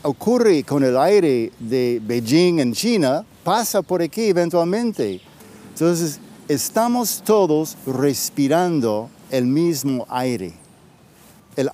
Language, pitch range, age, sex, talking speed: Spanish, 135-200 Hz, 60-79, male, 100 wpm